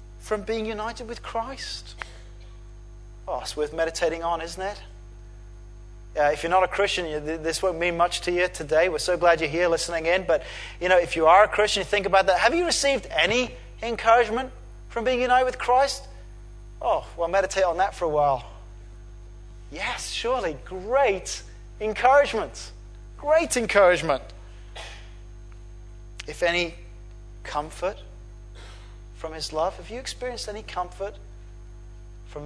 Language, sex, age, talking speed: English, male, 30-49, 150 wpm